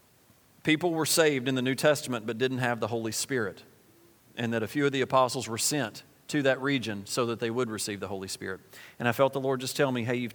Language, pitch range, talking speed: English, 110-135 Hz, 250 wpm